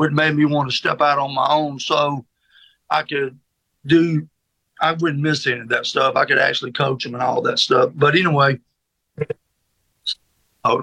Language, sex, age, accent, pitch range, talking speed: English, male, 50-69, American, 130-155 Hz, 175 wpm